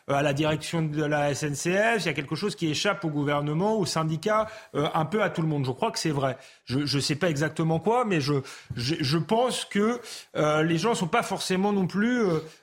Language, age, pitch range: French, 30-49, 155-205 Hz